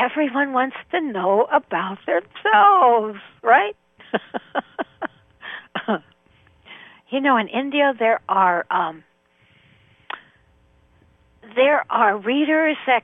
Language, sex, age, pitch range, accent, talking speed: English, female, 60-79, 180-255 Hz, American, 85 wpm